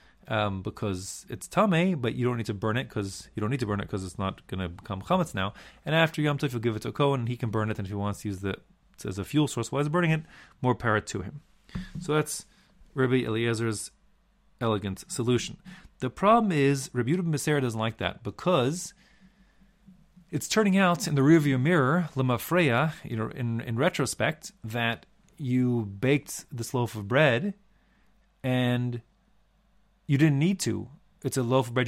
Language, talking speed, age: English, 200 wpm, 30-49